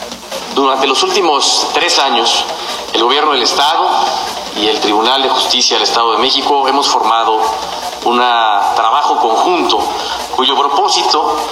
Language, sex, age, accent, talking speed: Spanish, male, 40-59, Mexican, 130 wpm